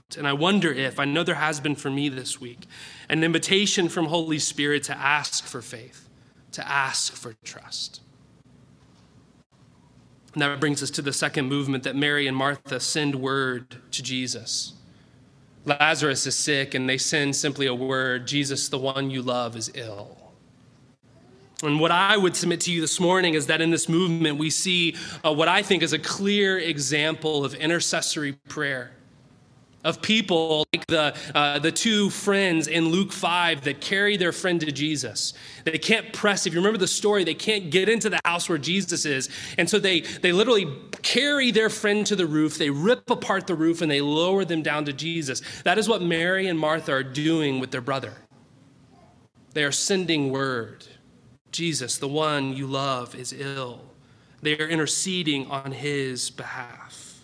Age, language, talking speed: 20-39, English, 175 wpm